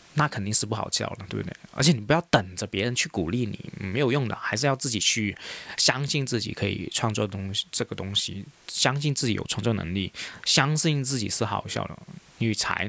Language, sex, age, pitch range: Chinese, male, 20-39, 100-130 Hz